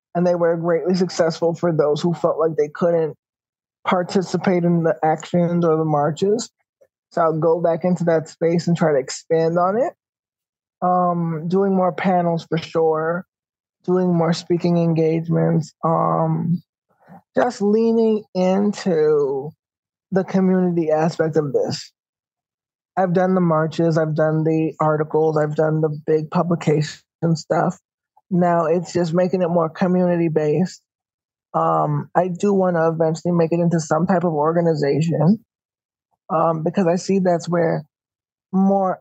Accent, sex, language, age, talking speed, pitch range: American, male, English, 20-39, 140 wpm, 160-185 Hz